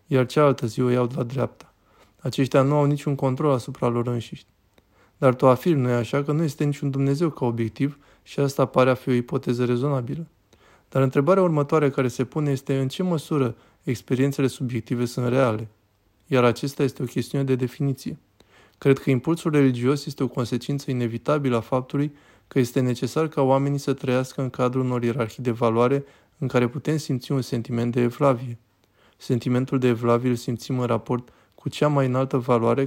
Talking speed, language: 185 wpm, Romanian